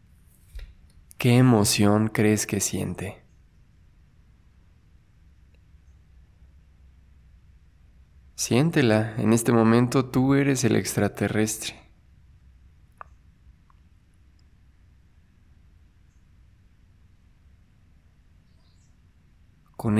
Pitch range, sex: 80-110 Hz, male